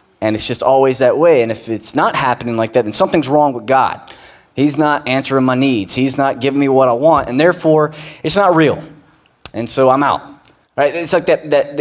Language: English